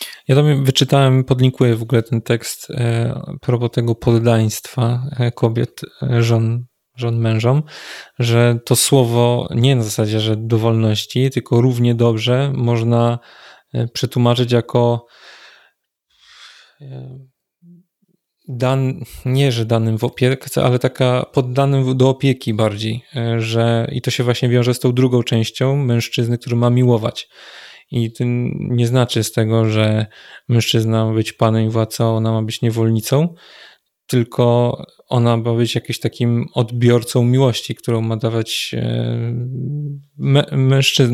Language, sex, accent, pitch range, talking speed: English, male, Polish, 115-135 Hz, 125 wpm